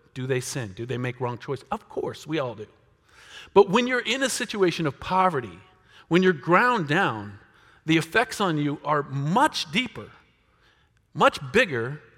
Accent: American